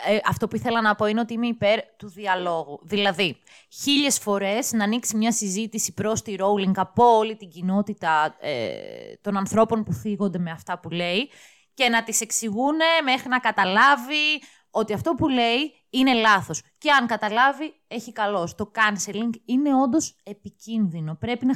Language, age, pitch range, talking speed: Greek, 20-39, 200-260 Hz, 165 wpm